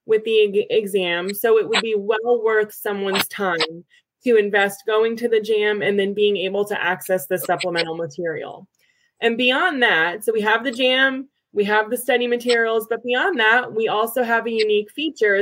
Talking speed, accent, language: 185 wpm, American, English